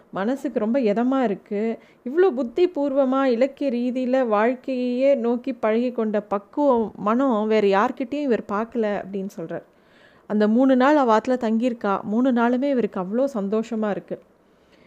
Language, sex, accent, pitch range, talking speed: Tamil, female, native, 210-255 Hz, 130 wpm